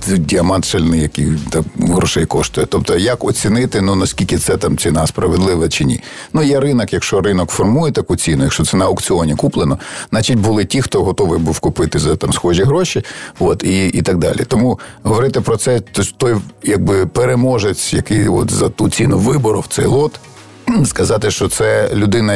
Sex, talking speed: male, 175 wpm